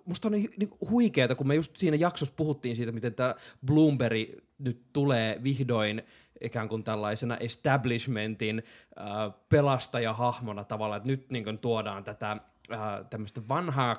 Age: 20-39